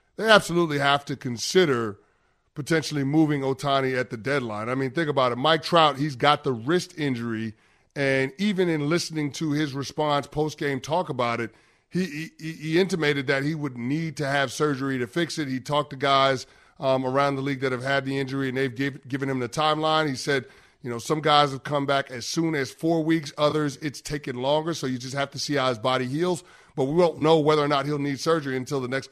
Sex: male